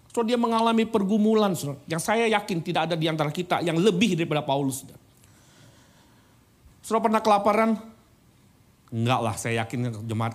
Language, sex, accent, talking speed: Indonesian, male, native, 155 wpm